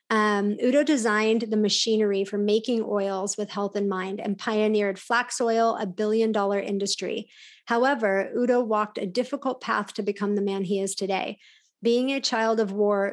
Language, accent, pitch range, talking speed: English, American, 205-235 Hz, 170 wpm